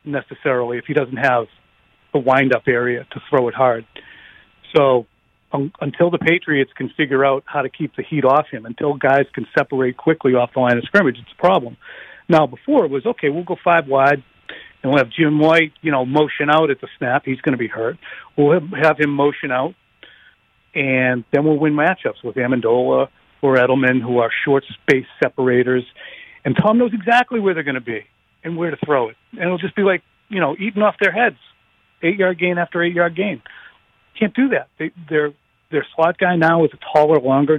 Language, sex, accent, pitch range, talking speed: English, male, American, 130-170 Hz, 205 wpm